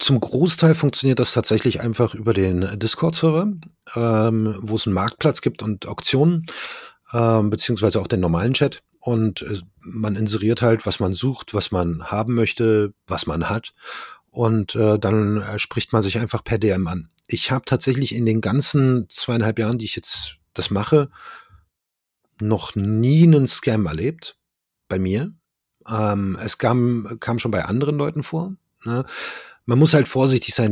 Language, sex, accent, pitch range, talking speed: German, male, German, 100-125 Hz, 160 wpm